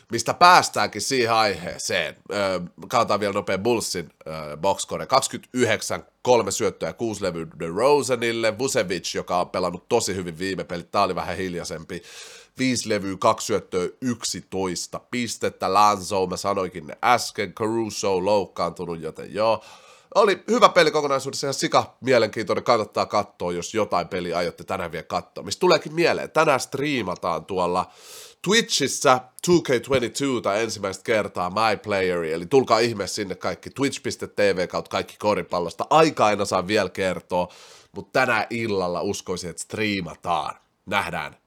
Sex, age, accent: male, 30-49, native